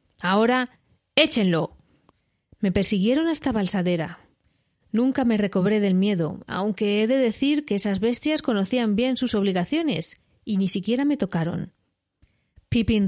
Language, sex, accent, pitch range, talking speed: Spanish, female, Spanish, 190-255 Hz, 130 wpm